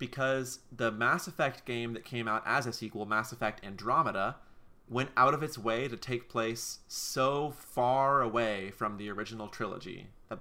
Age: 20-39